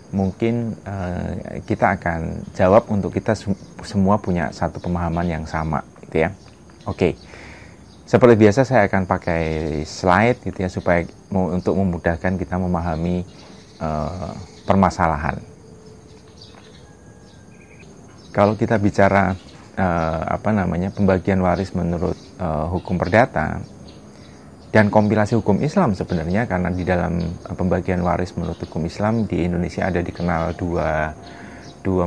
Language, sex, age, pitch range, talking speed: Indonesian, male, 30-49, 85-100 Hz, 120 wpm